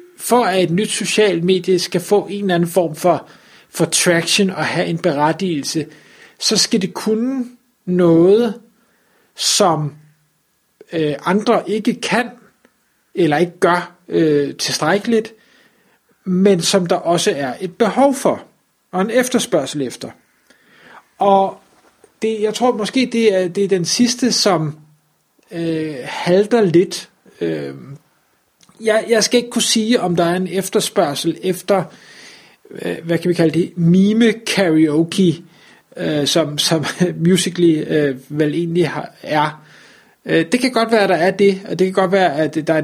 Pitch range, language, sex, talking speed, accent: 160-215 Hz, Danish, male, 140 wpm, native